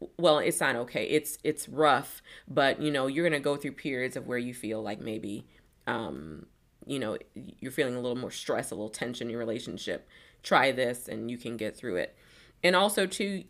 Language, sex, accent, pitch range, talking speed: English, female, American, 125-155 Hz, 215 wpm